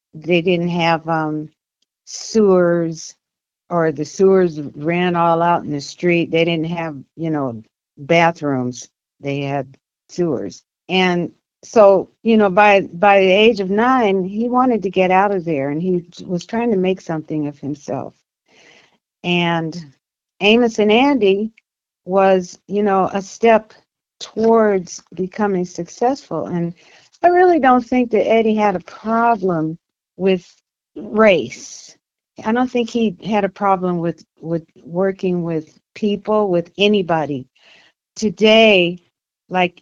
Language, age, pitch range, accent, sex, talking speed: English, 60-79, 165-210 Hz, American, female, 135 wpm